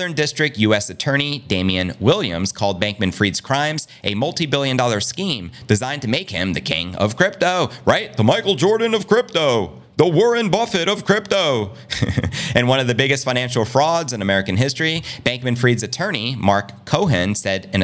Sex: male